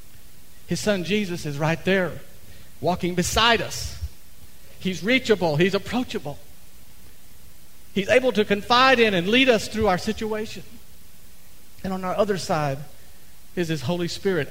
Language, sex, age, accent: English, male, 50-69, American